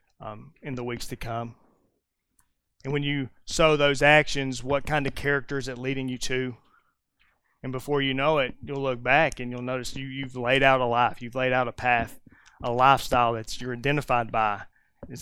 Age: 30-49